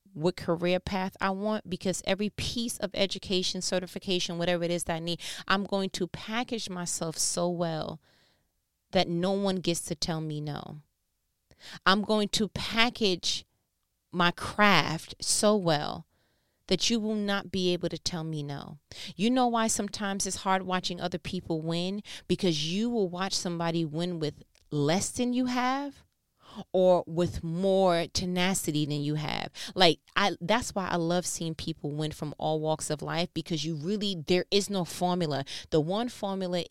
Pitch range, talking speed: 160-200 Hz, 165 wpm